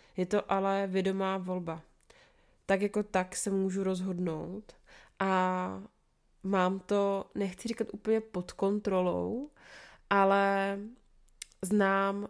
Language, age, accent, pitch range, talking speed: Czech, 20-39, native, 185-200 Hz, 100 wpm